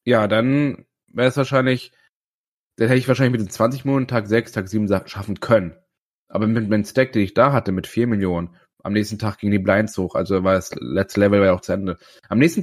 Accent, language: German, German